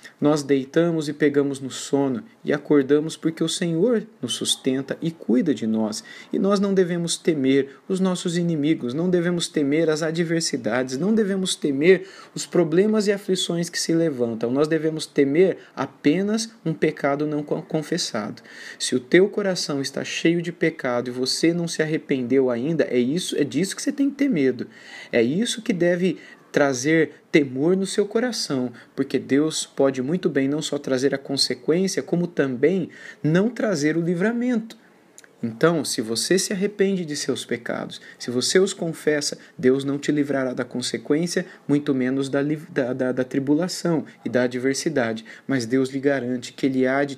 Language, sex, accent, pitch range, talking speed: Portuguese, male, Brazilian, 130-175 Hz, 165 wpm